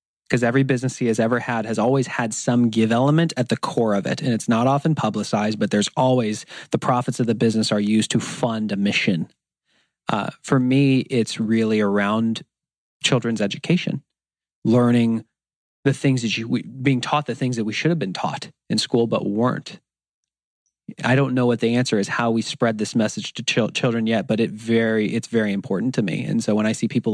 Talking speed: 210 wpm